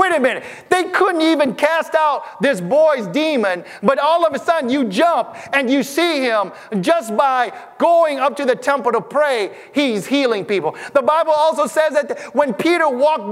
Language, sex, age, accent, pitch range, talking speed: English, male, 30-49, American, 190-285 Hz, 190 wpm